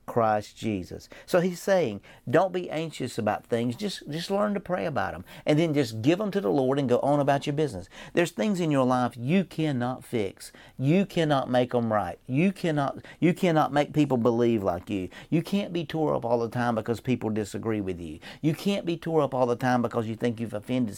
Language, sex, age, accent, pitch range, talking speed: English, male, 50-69, American, 115-155 Hz, 225 wpm